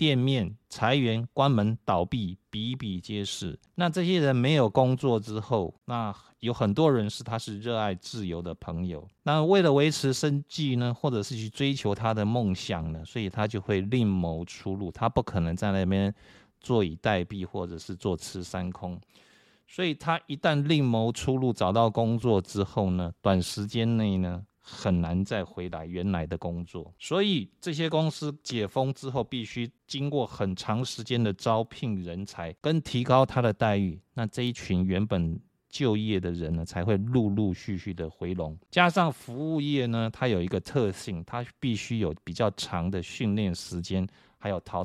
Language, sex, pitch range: Chinese, male, 95-125 Hz